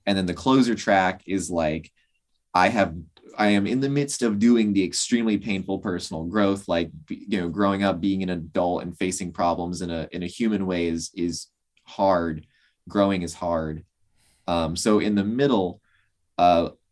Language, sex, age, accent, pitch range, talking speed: English, male, 20-39, American, 85-105 Hz, 175 wpm